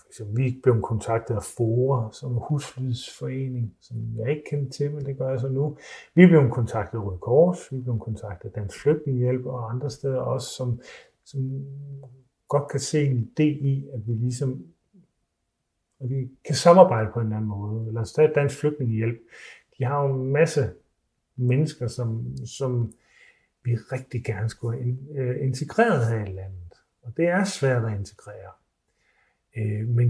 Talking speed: 165 wpm